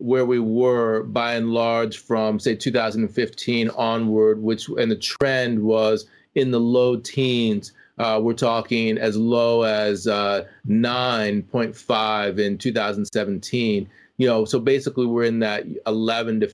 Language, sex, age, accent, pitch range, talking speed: English, male, 40-59, American, 110-120 Hz, 140 wpm